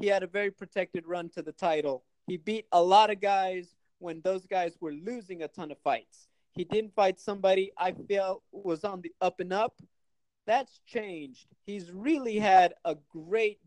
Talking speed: 190 wpm